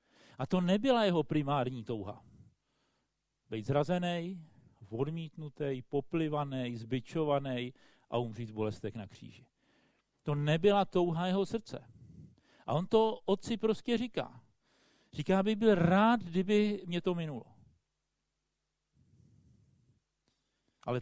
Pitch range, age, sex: 125-180 Hz, 50-69, male